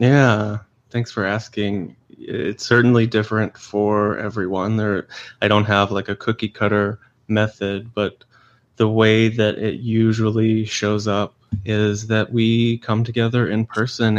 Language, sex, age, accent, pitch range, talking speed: English, male, 20-39, American, 105-120 Hz, 140 wpm